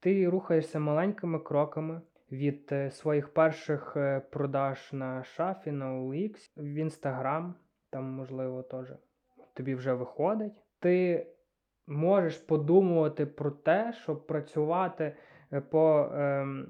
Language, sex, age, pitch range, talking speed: Ukrainian, male, 20-39, 145-165 Hz, 110 wpm